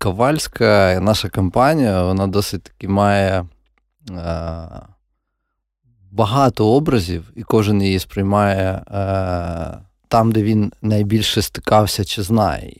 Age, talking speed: 30-49, 105 wpm